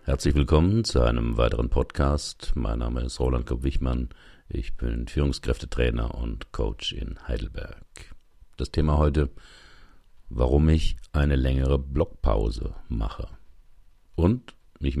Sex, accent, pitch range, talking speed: male, German, 65-75 Hz, 115 wpm